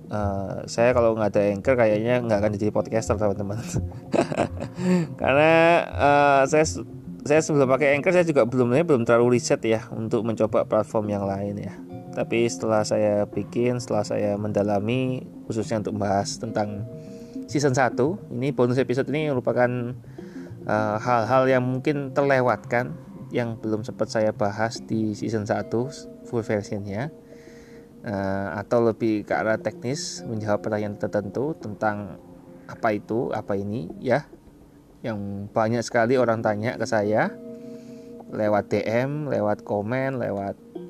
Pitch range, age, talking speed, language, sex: 105-130 Hz, 20-39, 135 wpm, Indonesian, male